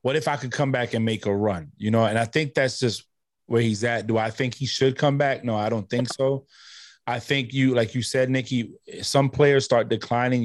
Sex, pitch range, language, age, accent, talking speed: male, 115-140 Hz, English, 20-39, American, 245 wpm